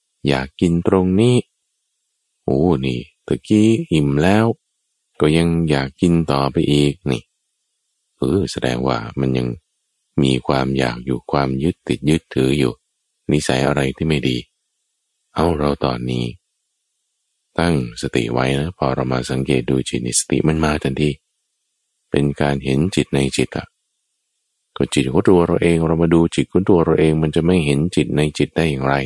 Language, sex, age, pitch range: Thai, male, 20-39, 65-85 Hz